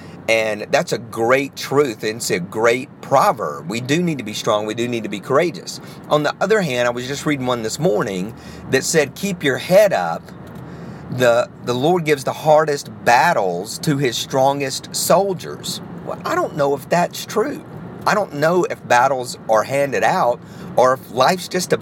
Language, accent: English, American